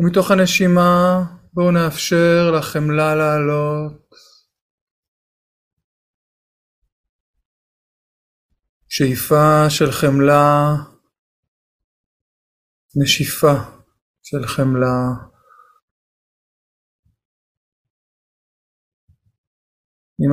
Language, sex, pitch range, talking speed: Hebrew, male, 100-155 Hz, 40 wpm